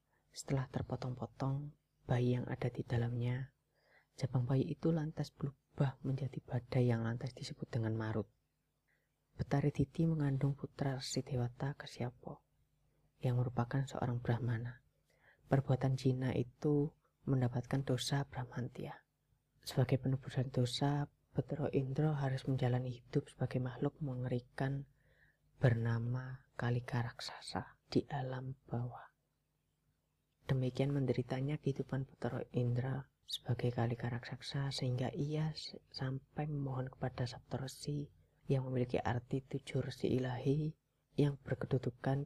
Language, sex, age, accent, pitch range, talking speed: Indonesian, female, 20-39, native, 125-140 Hz, 105 wpm